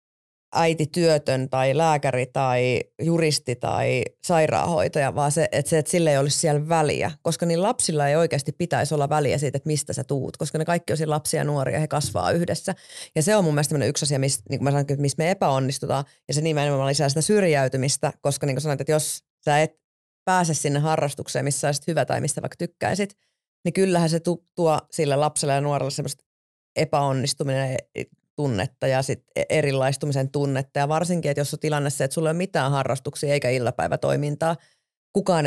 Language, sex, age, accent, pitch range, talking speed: Finnish, female, 30-49, native, 135-155 Hz, 185 wpm